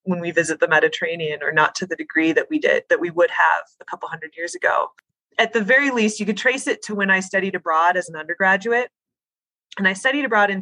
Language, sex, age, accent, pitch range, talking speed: English, female, 20-39, American, 170-215 Hz, 245 wpm